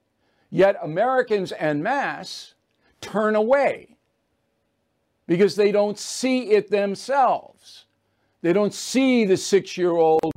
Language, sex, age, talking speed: English, male, 60-79, 100 wpm